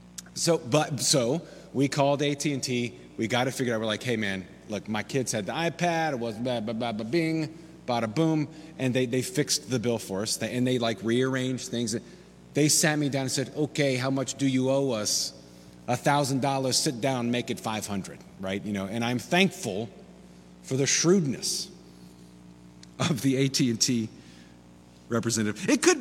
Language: English